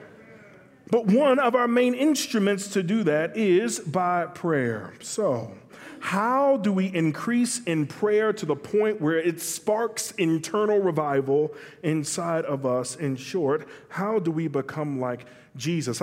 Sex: male